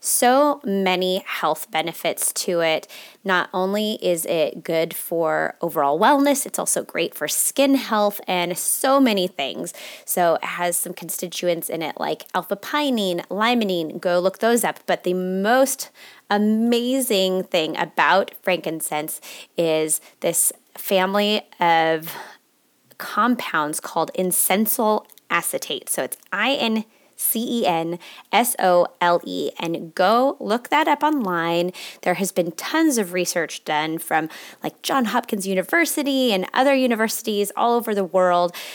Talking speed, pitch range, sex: 130 wpm, 175-235 Hz, female